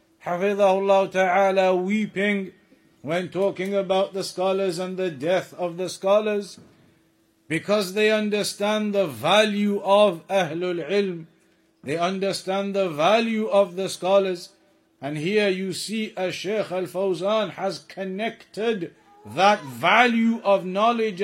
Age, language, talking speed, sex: 60-79, English, 120 wpm, male